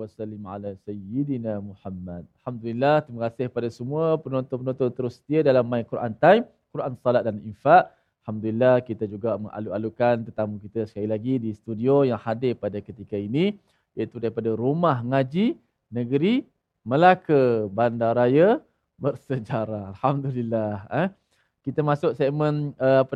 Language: Malayalam